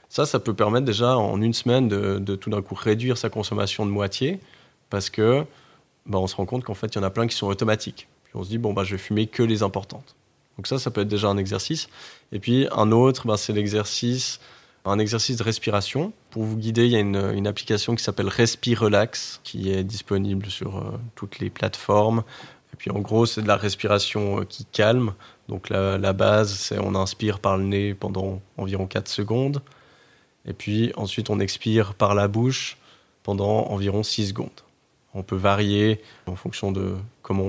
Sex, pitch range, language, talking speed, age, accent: male, 100-115 Hz, French, 205 wpm, 20-39, French